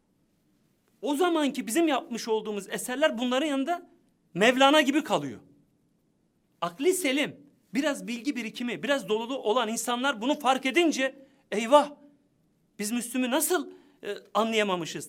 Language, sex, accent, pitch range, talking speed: Turkish, male, native, 225-285 Hz, 115 wpm